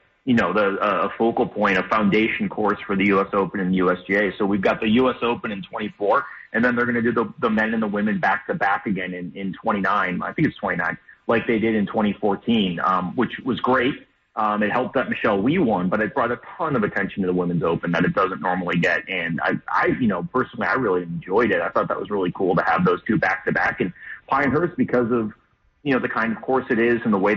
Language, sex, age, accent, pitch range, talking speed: English, male, 30-49, American, 100-130 Hz, 250 wpm